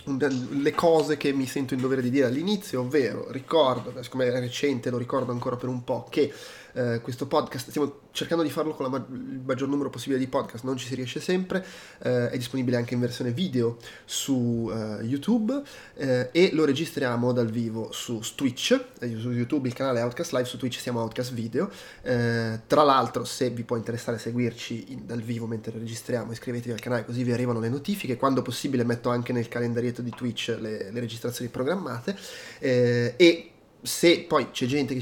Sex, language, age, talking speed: male, Italian, 20-39, 195 wpm